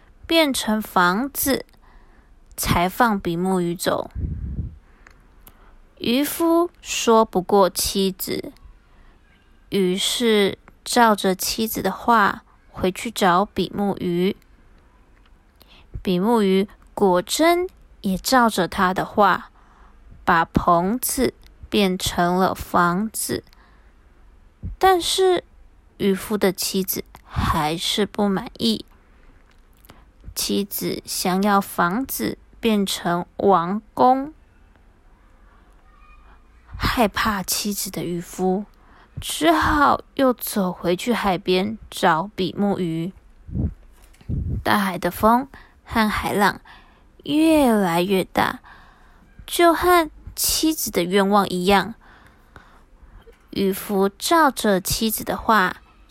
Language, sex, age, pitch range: Chinese, female, 20-39, 175-225 Hz